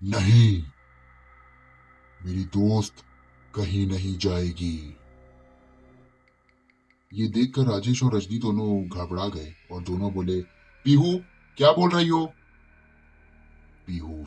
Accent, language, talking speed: native, Hindi, 95 wpm